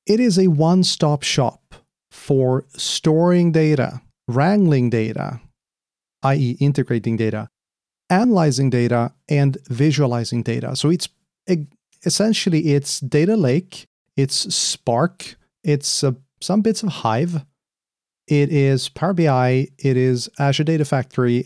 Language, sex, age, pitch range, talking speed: English, male, 30-49, 125-155 Hz, 110 wpm